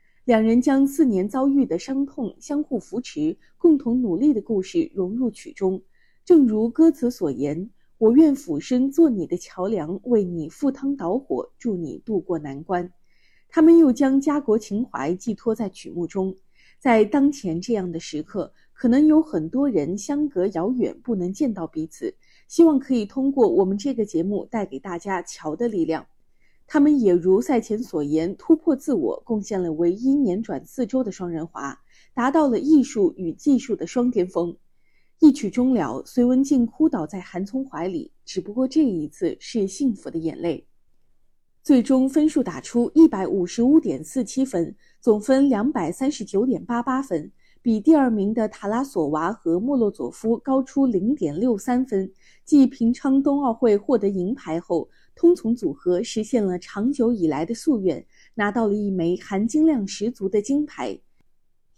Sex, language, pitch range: female, Chinese, 185-275 Hz